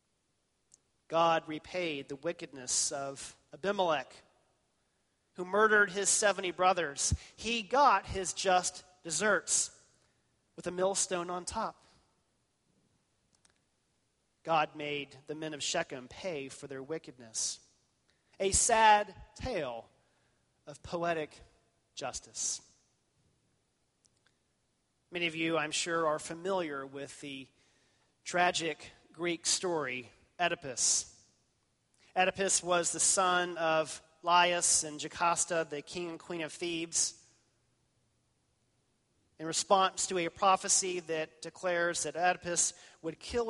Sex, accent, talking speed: male, American, 105 wpm